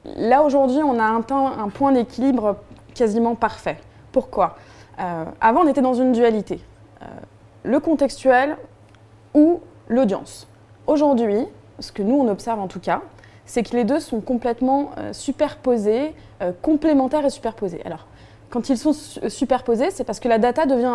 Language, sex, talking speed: French, female, 160 wpm